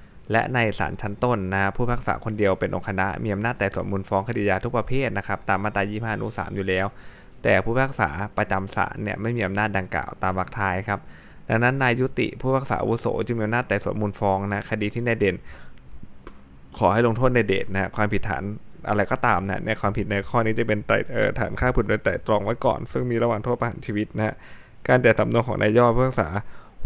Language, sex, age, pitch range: Thai, male, 20-39, 95-115 Hz